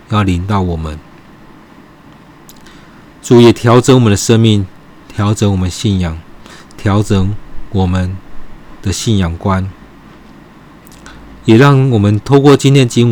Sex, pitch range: male, 95-125 Hz